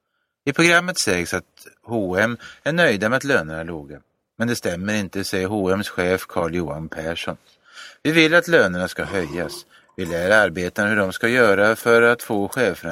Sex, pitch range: male, 90-125 Hz